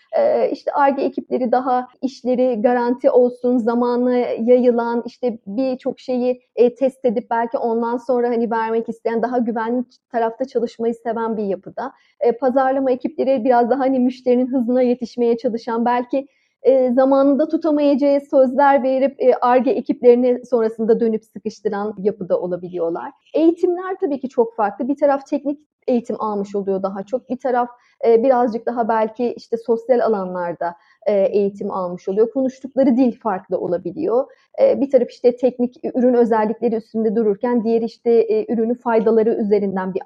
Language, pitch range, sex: Turkish, 225-275 Hz, female